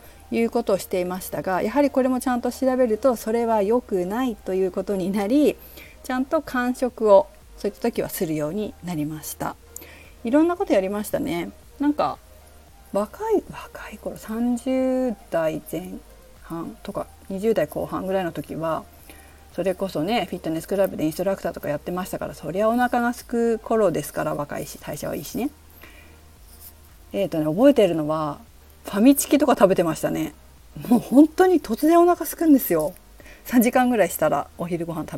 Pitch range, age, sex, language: 155-250 Hz, 40-59, female, Japanese